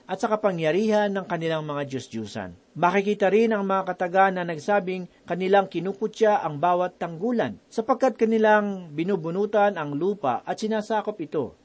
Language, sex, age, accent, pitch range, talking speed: Filipino, male, 40-59, native, 165-215 Hz, 140 wpm